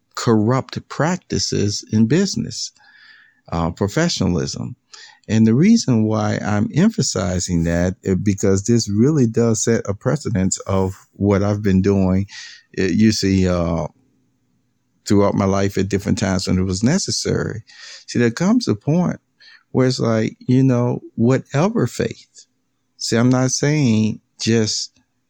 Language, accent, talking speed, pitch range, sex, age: English, American, 135 wpm, 100-130 Hz, male, 50-69